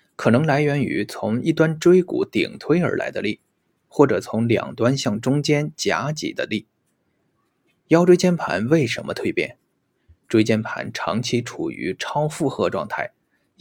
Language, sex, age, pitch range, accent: Chinese, male, 20-39, 125-165 Hz, native